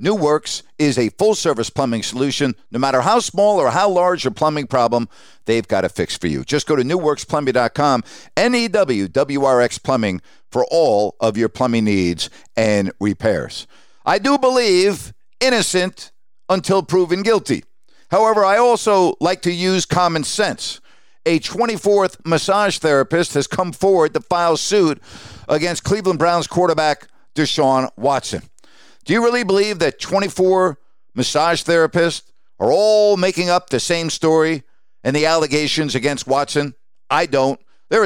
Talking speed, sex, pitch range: 140 wpm, male, 135-185 Hz